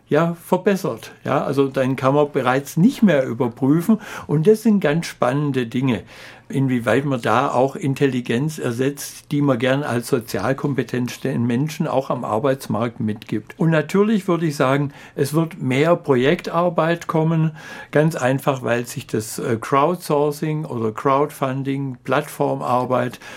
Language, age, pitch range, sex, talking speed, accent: German, 60-79, 125-160 Hz, male, 135 wpm, German